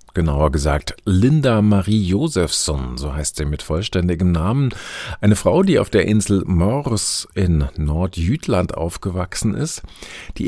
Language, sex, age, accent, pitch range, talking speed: German, male, 50-69, German, 80-105 Hz, 130 wpm